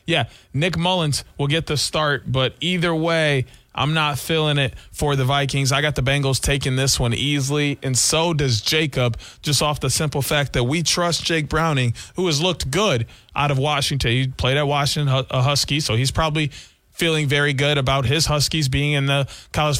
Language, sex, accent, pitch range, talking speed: English, male, American, 135-160 Hz, 195 wpm